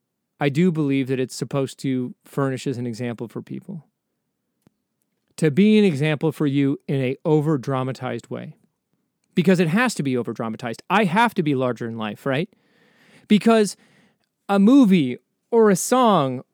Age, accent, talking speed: 30-49, American, 165 wpm